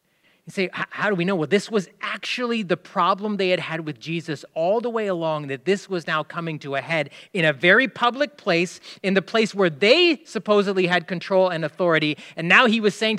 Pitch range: 155-210 Hz